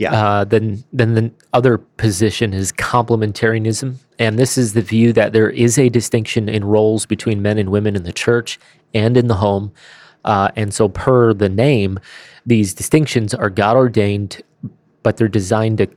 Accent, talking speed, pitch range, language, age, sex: American, 175 wpm, 100-120 Hz, English, 30-49, male